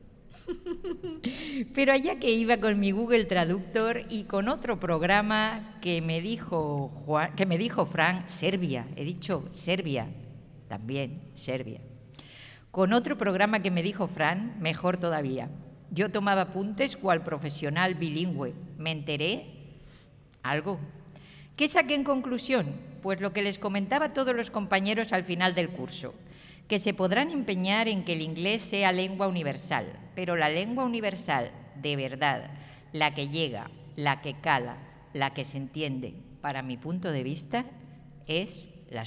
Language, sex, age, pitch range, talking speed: Spanish, female, 50-69, 145-205 Hz, 145 wpm